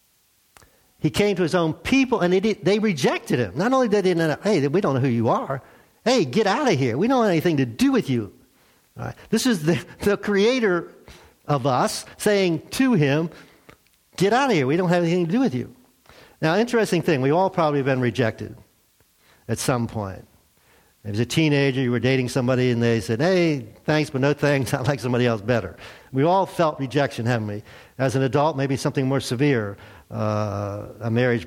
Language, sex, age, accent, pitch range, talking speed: English, male, 60-79, American, 115-170 Hz, 205 wpm